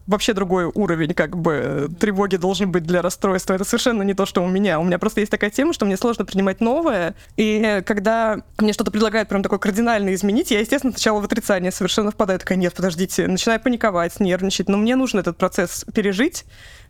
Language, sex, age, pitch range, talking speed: Russian, female, 20-39, 180-220 Hz, 200 wpm